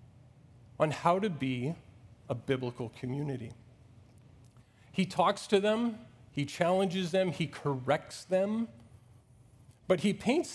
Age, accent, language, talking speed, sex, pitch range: 40-59, American, English, 115 wpm, male, 125-170 Hz